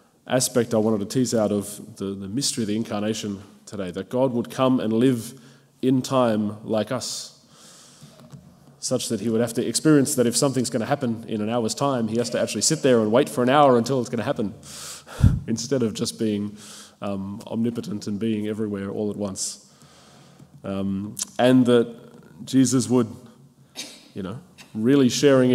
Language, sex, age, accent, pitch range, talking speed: English, male, 20-39, Australian, 110-125 Hz, 185 wpm